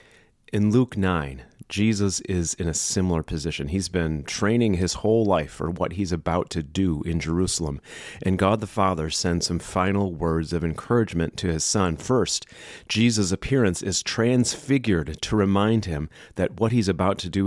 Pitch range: 85-100 Hz